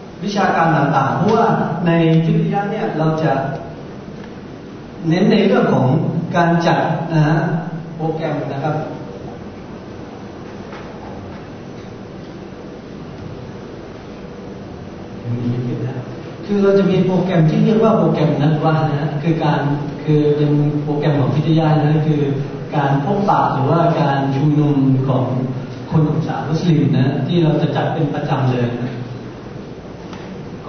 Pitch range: 150-175 Hz